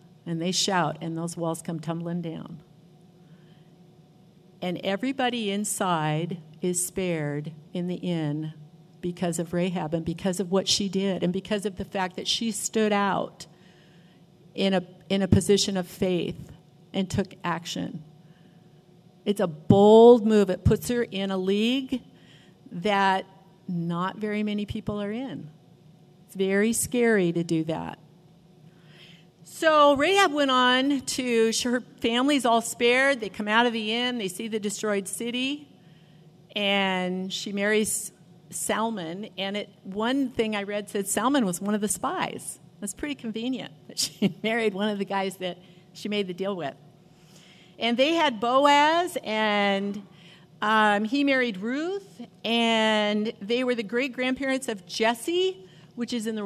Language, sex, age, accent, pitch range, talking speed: English, female, 50-69, American, 175-225 Hz, 150 wpm